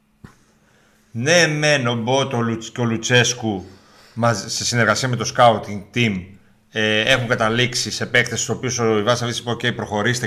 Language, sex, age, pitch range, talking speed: Greek, male, 30-49, 110-145 Hz, 150 wpm